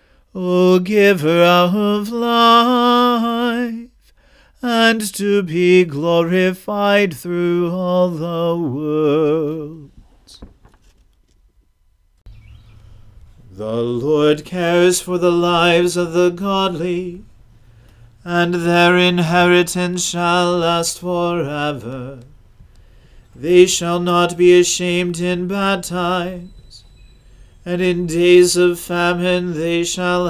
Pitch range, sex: 150-180 Hz, male